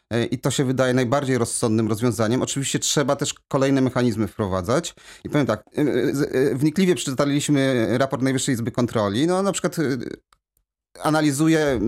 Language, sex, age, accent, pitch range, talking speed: Polish, male, 30-49, native, 120-150 Hz, 130 wpm